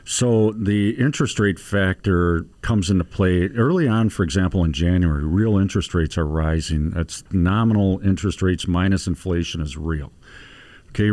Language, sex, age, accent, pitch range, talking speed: English, male, 50-69, American, 85-100 Hz, 150 wpm